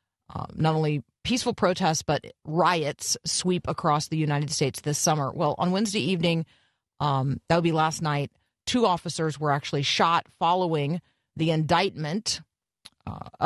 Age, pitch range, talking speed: 40-59, 150-180 Hz, 145 wpm